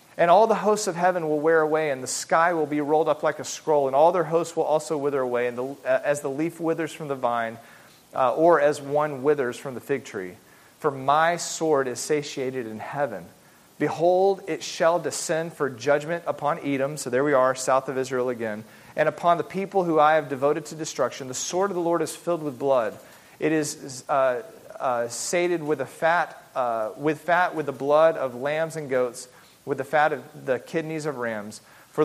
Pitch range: 125-155 Hz